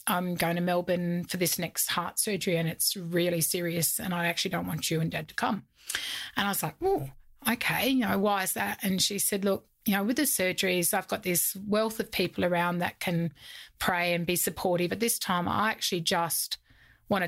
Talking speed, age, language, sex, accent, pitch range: 220 wpm, 30-49, English, female, Australian, 175-200 Hz